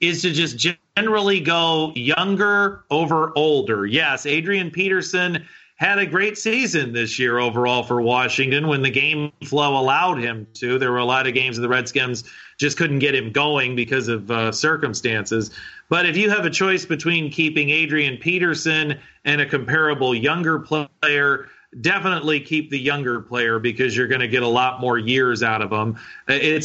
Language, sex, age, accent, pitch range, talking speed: English, male, 30-49, American, 125-160 Hz, 175 wpm